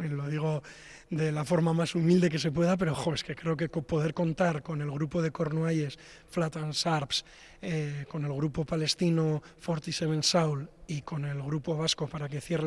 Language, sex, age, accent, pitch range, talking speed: Spanish, male, 20-39, Spanish, 155-175 Hz, 195 wpm